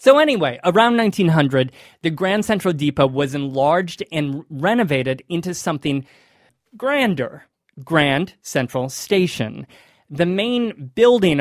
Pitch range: 135-185 Hz